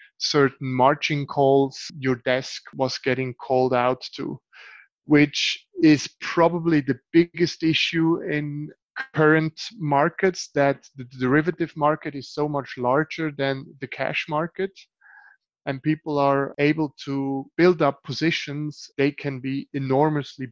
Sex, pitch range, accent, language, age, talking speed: male, 135-155 Hz, German, English, 30-49, 125 wpm